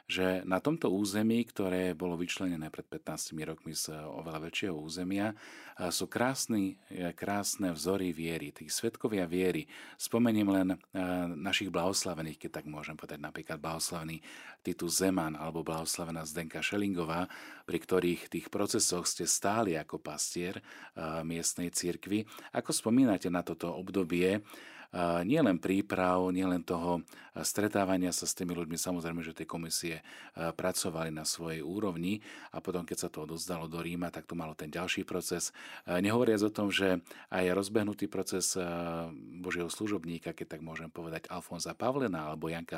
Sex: male